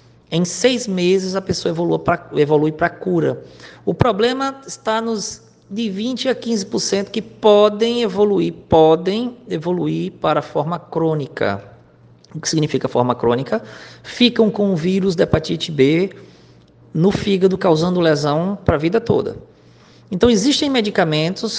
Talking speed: 140 wpm